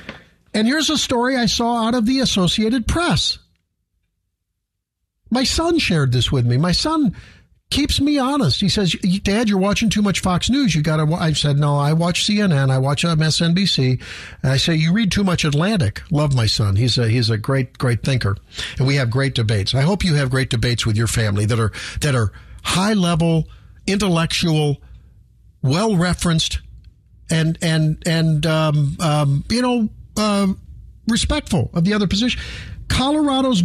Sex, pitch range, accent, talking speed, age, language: male, 140-220 Hz, American, 180 wpm, 50-69, English